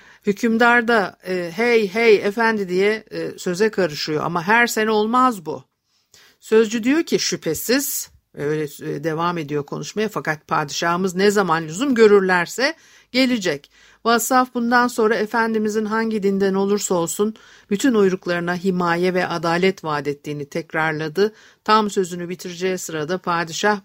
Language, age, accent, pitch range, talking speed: Turkish, 50-69, native, 175-215 Hz, 125 wpm